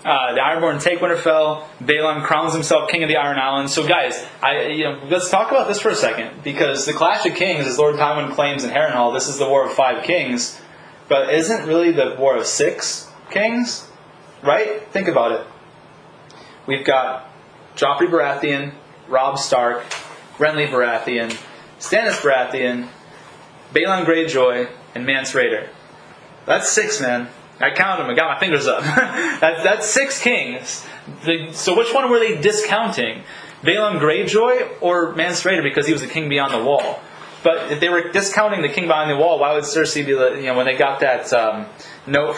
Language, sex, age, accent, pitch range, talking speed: English, male, 20-39, American, 140-195 Hz, 180 wpm